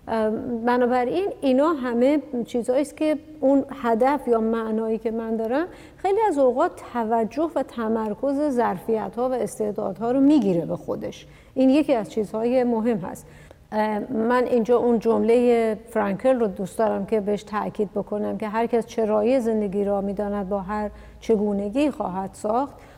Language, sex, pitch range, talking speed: Persian, female, 210-255 Hz, 145 wpm